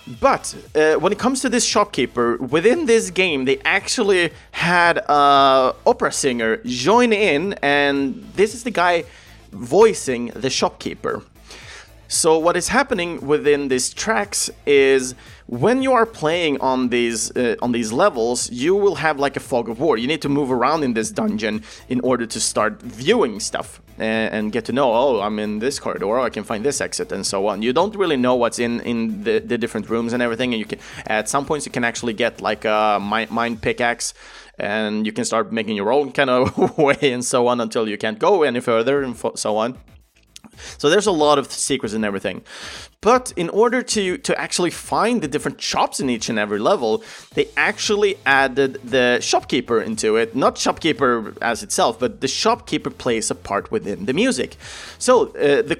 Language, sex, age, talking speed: Swedish, male, 30-49, 195 wpm